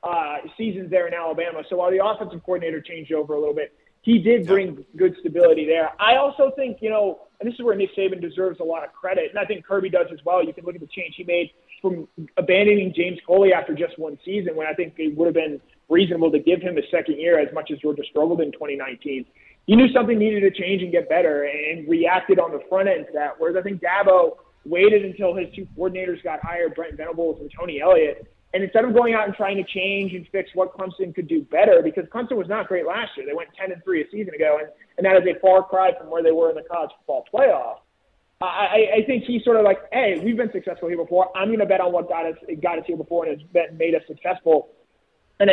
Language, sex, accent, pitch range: English, male, American, 165-205 Hz